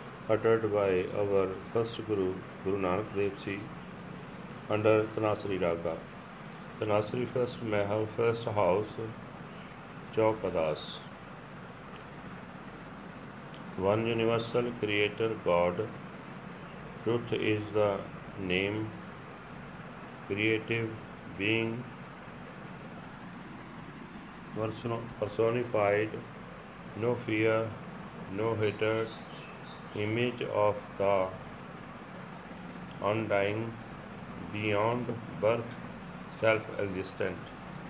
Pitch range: 105-115 Hz